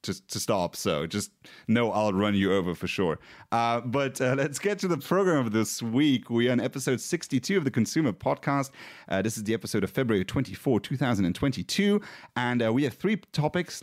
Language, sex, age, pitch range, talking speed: English, male, 30-49, 100-140 Hz, 215 wpm